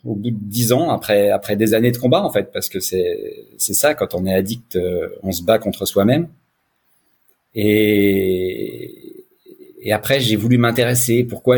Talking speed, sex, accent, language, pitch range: 180 wpm, male, French, French, 110-135 Hz